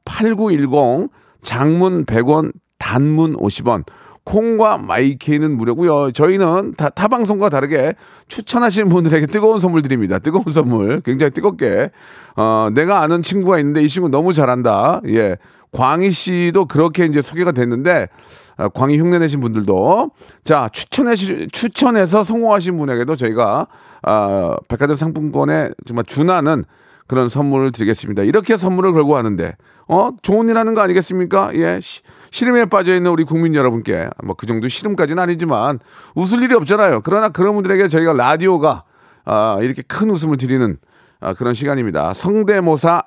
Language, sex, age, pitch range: Korean, male, 40-59, 125-195 Hz